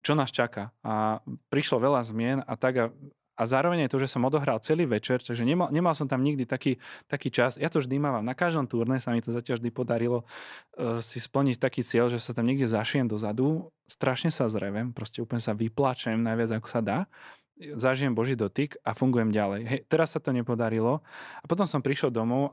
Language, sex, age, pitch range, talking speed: Slovak, male, 20-39, 110-135 Hz, 210 wpm